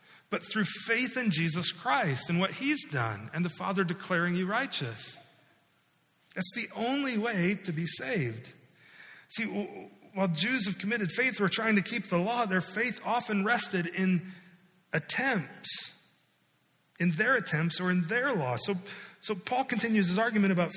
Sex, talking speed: male, 160 wpm